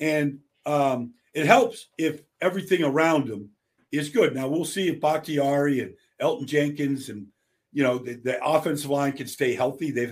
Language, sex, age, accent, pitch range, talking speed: English, male, 50-69, American, 135-170 Hz, 170 wpm